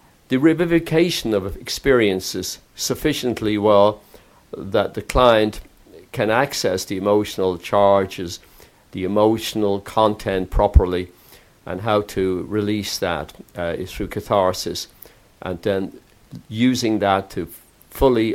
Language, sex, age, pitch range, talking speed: English, male, 50-69, 95-115 Hz, 110 wpm